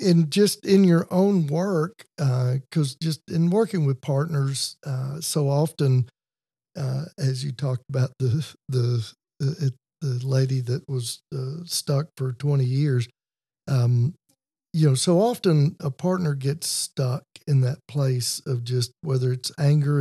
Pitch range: 130-155 Hz